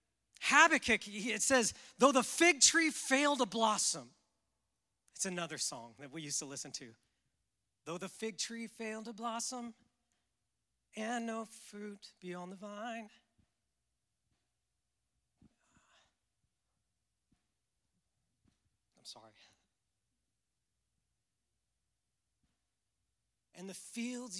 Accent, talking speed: American, 90 wpm